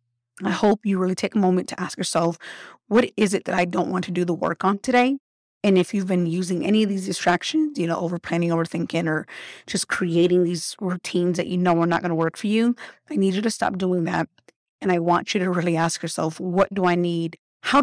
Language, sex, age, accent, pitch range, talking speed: English, female, 30-49, American, 170-195 Hz, 240 wpm